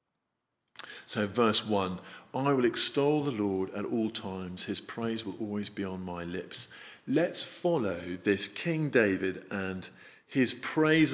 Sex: male